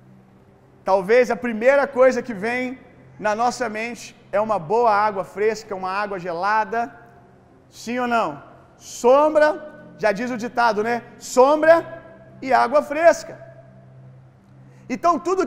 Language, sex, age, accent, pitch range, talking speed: Gujarati, male, 40-59, Brazilian, 195-275 Hz, 125 wpm